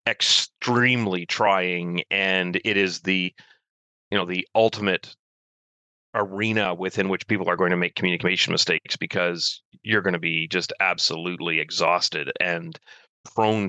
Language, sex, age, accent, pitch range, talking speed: English, male, 30-49, American, 90-110 Hz, 130 wpm